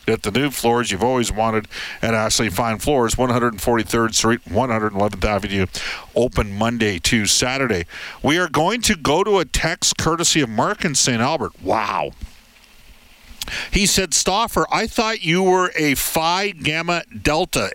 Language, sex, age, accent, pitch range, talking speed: English, male, 50-69, American, 110-145 Hz, 150 wpm